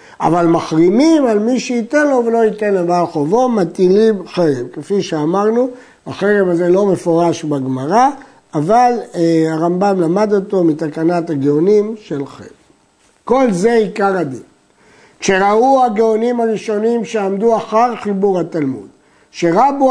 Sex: male